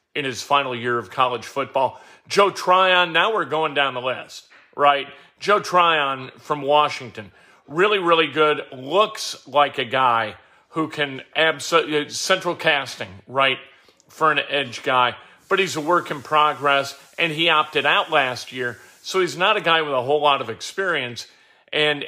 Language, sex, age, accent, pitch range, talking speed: English, male, 40-59, American, 135-165 Hz, 165 wpm